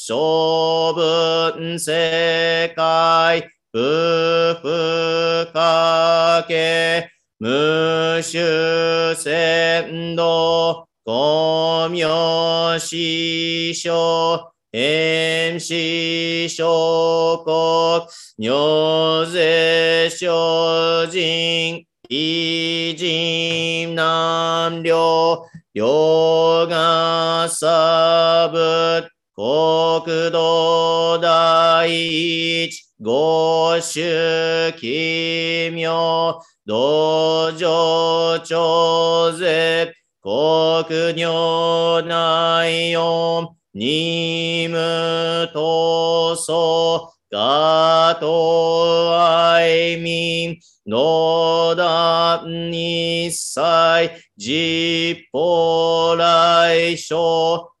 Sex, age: male, 40-59